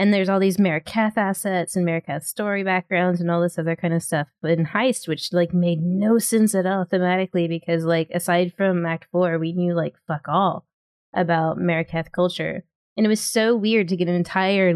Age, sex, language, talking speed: 20-39, female, English, 205 wpm